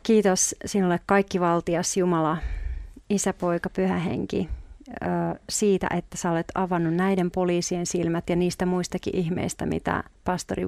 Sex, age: female, 40-59